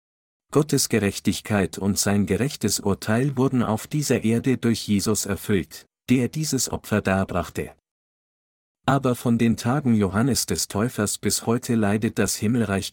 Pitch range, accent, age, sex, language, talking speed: 100-125 Hz, German, 50-69, male, German, 135 wpm